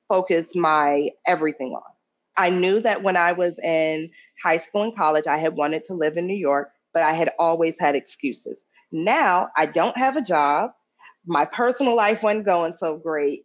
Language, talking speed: English, 185 wpm